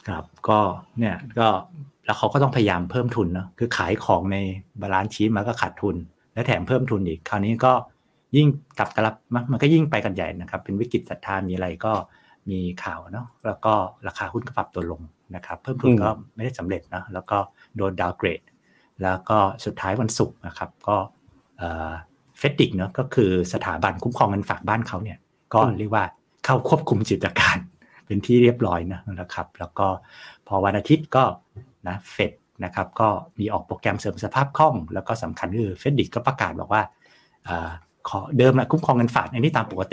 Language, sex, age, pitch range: Thai, male, 60-79, 95-125 Hz